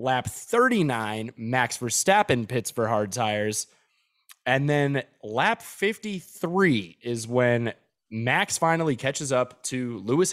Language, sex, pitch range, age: English, male, 115-140 Hz, 20-39